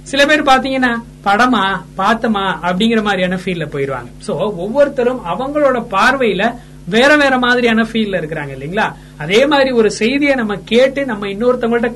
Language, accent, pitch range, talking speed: Tamil, native, 180-245 Hz, 135 wpm